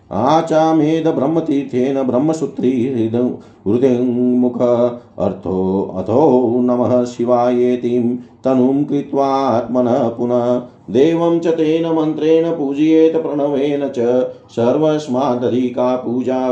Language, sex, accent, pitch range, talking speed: Hindi, male, native, 120-135 Hz, 75 wpm